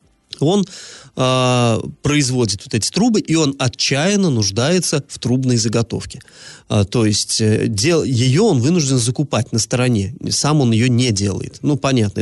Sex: male